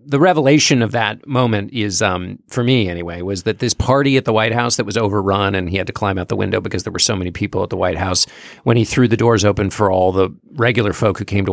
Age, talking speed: 40-59, 275 wpm